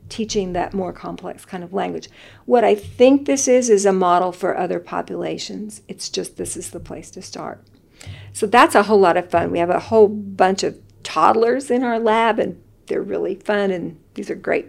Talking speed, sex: 210 wpm, female